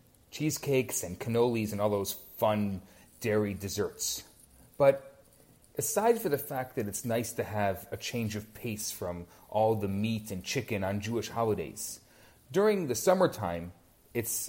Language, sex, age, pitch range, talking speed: English, male, 30-49, 110-145 Hz, 150 wpm